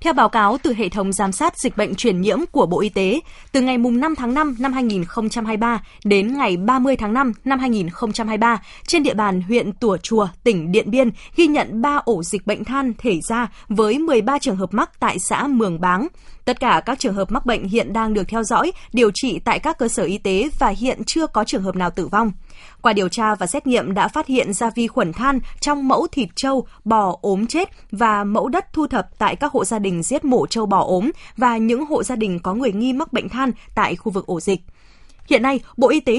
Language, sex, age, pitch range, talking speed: Vietnamese, female, 20-39, 205-265 Hz, 235 wpm